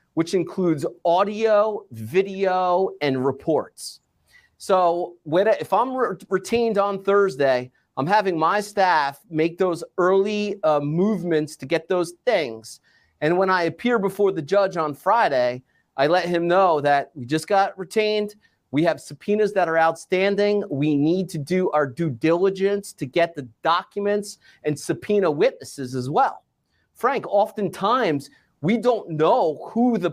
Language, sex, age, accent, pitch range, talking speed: English, male, 30-49, American, 155-200 Hz, 145 wpm